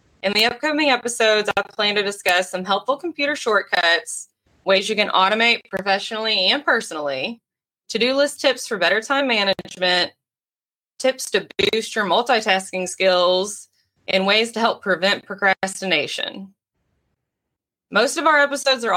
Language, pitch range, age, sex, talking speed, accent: English, 185-250 Hz, 20-39, female, 135 wpm, American